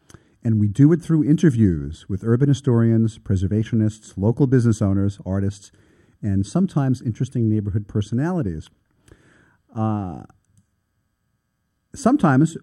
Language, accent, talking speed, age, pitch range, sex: English, American, 100 wpm, 40-59, 95-130 Hz, male